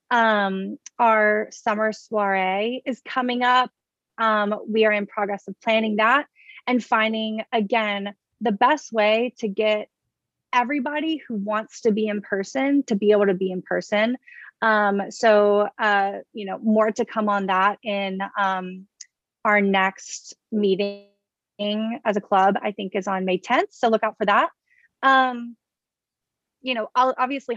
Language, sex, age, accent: English, female, 30-49, American